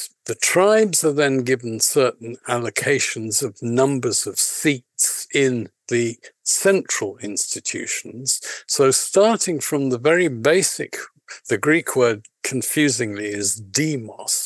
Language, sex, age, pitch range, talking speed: English, male, 50-69, 120-170 Hz, 110 wpm